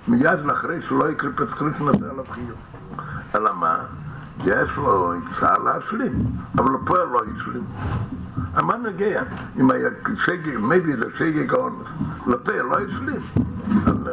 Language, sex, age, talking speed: Hebrew, male, 60-79, 125 wpm